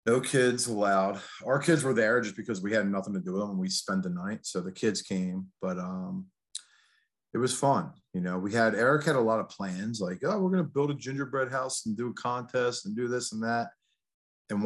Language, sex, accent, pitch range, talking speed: English, male, American, 95-115 Hz, 240 wpm